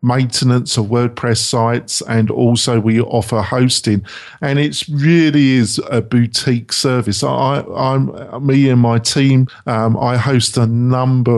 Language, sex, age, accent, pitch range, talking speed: English, male, 50-69, British, 115-130 Hz, 140 wpm